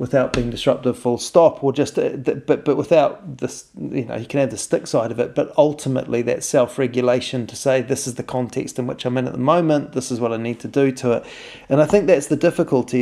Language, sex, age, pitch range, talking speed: English, male, 30-49, 125-150 Hz, 250 wpm